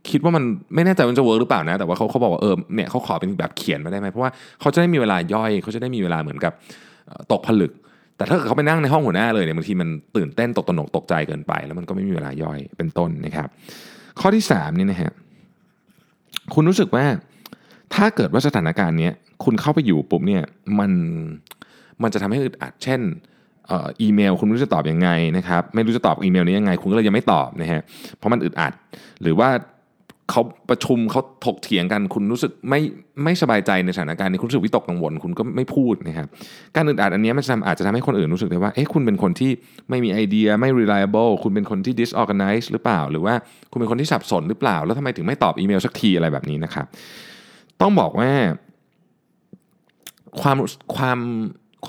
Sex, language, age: male, Thai, 20-39